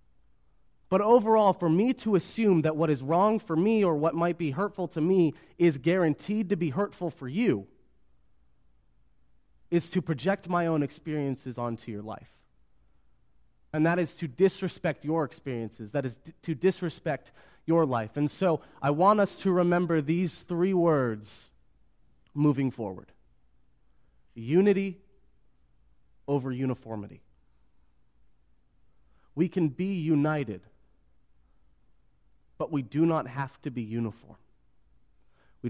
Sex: male